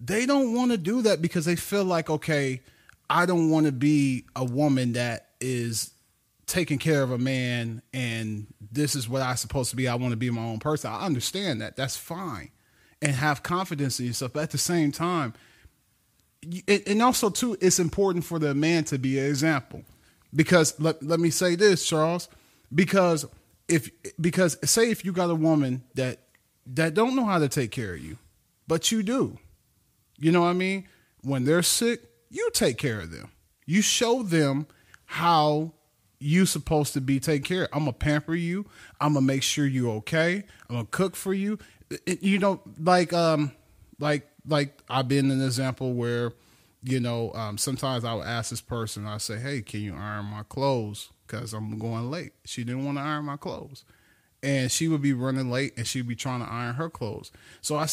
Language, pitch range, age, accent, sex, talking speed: English, 120-170 Hz, 30-49, American, male, 200 wpm